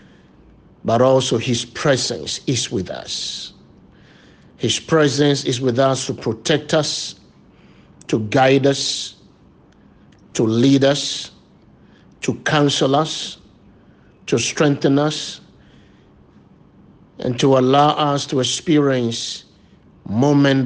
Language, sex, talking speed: English, male, 100 wpm